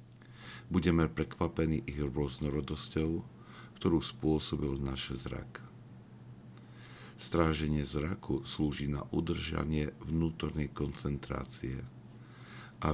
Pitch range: 70-80 Hz